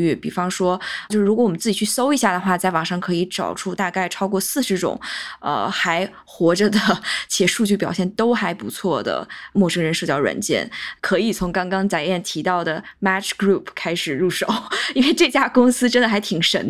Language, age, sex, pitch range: Chinese, 20-39, female, 180-230 Hz